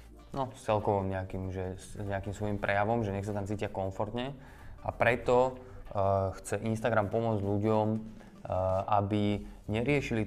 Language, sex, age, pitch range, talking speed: Slovak, male, 20-39, 100-115 Hz, 135 wpm